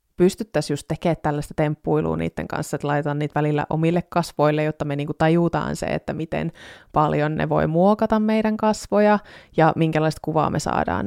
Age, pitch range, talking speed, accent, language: 20-39, 150-170 Hz, 165 wpm, native, Finnish